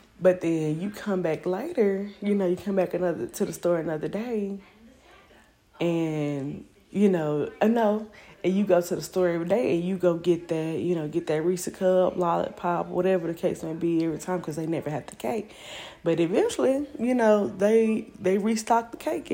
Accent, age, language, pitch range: American, 20-39, English, 170-205 Hz